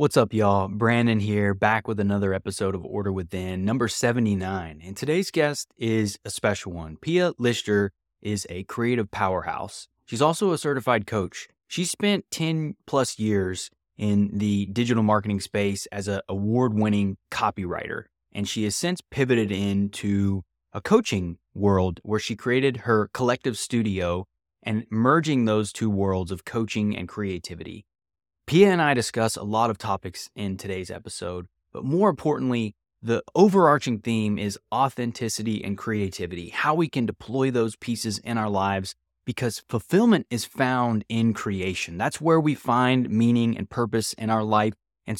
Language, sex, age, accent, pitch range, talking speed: English, male, 20-39, American, 100-120 Hz, 155 wpm